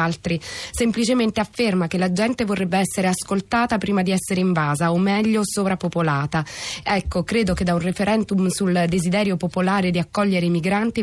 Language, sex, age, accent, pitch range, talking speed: Italian, female, 20-39, native, 180-215 Hz, 160 wpm